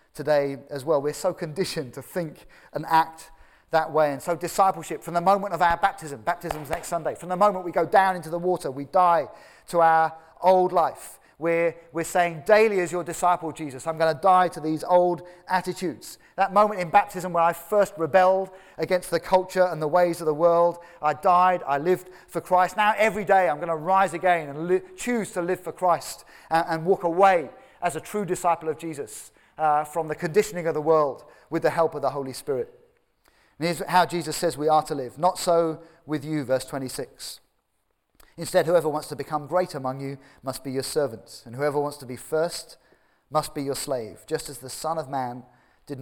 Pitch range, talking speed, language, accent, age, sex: 145-180 Hz, 205 wpm, English, British, 30-49, male